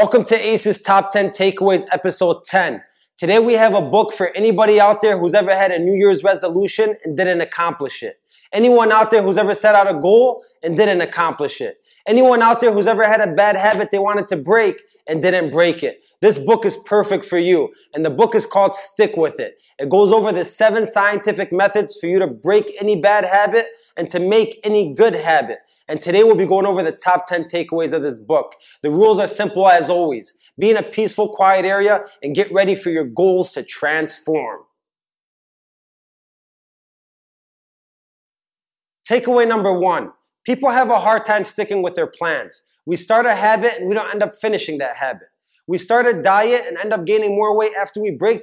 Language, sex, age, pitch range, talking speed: English, male, 20-39, 185-225 Hz, 200 wpm